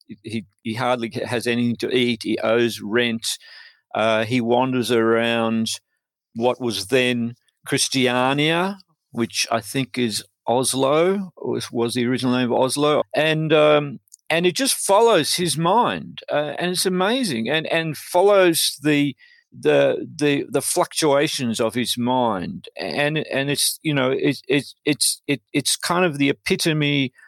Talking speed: 145 wpm